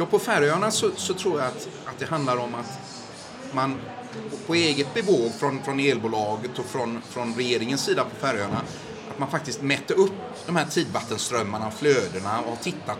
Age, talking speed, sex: 30-49, 180 wpm, male